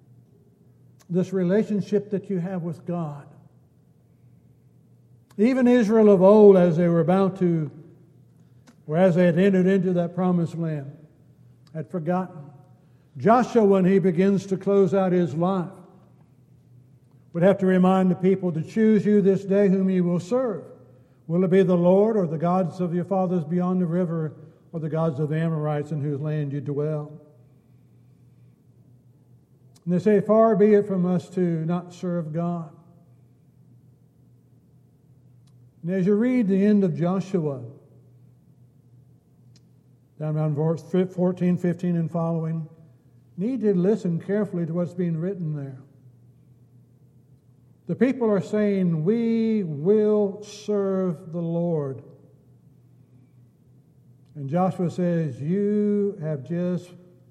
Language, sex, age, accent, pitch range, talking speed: English, male, 60-79, American, 140-190 Hz, 135 wpm